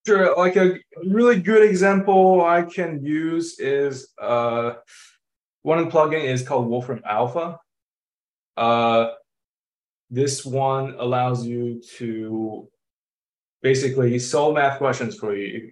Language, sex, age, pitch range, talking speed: English, male, 20-39, 115-140 Hz, 110 wpm